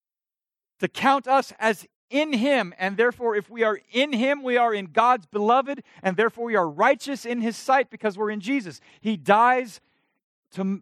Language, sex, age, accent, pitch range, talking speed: English, male, 40-59, American, 140-205 Hz, 185 wpm